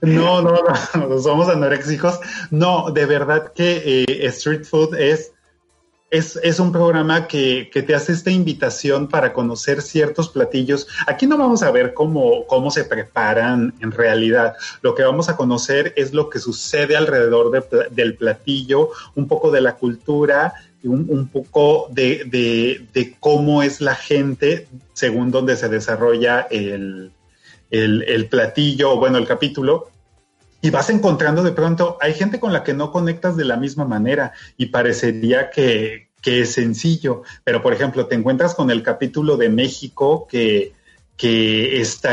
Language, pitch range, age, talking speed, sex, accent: Spanish, 125-165 Hz, 30-49, 160 wpm, male, Mexican